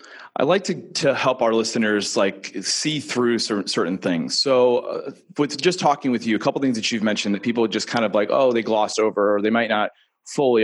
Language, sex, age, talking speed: English, male, 30-49, 235 wpm